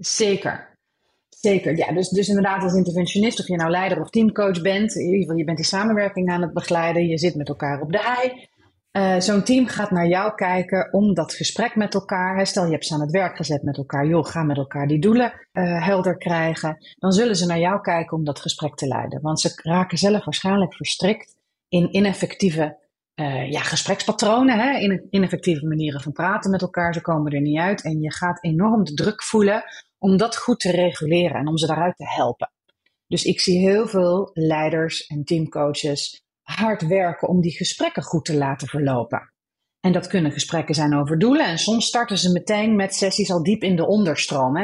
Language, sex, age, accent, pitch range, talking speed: Dutch, female, 30-49, Dutch, 155-195 Hz, 200 wpm